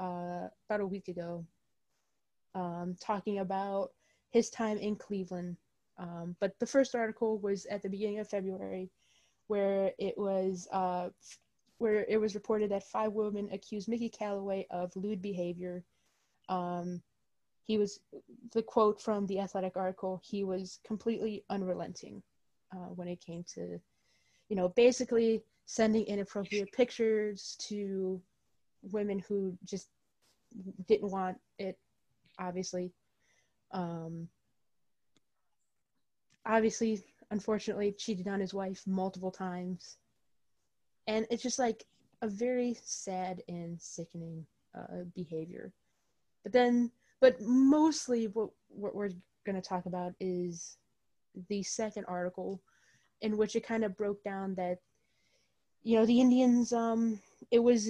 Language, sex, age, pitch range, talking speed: English, female, 20-39, 180-220 Hz, 125 wpm